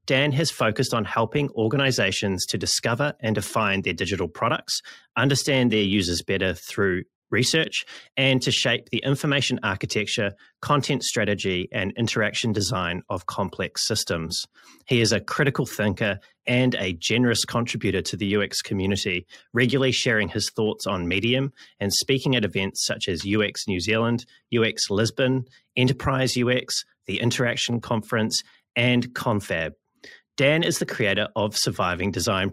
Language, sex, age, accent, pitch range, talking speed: English, male, 30-49, Australian, 100-130 Hz, 140 wpm